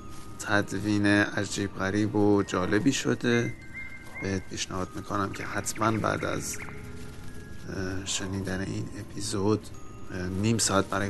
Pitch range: 90-105 Hz